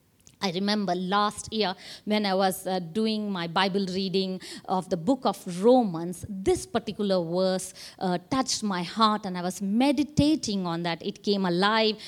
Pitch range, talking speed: 190-250 Hz, 165 wpm